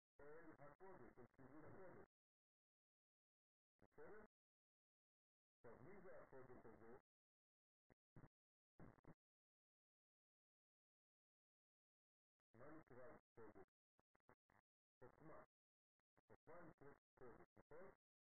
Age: 50-69